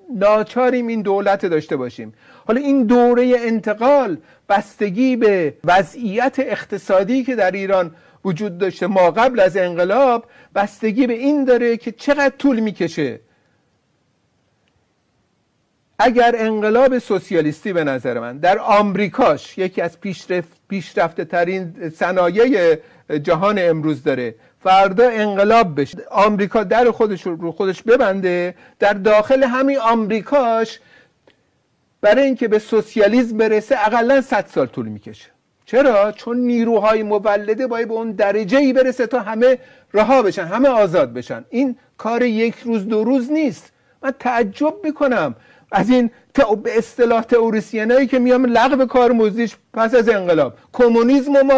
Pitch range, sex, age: 195-250 Hz, male, 50-69